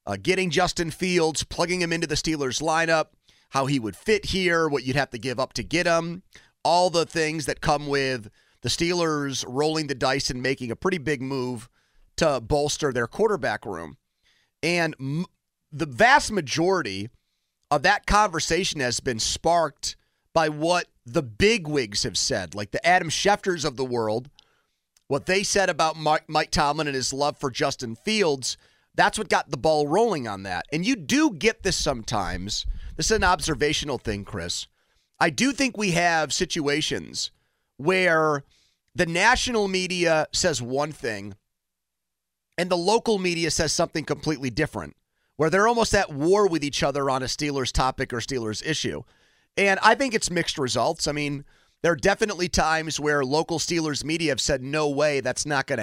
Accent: American